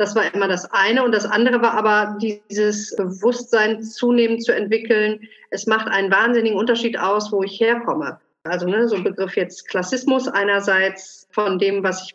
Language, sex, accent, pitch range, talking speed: German, female, German, 205-240 Hz, 175 wpm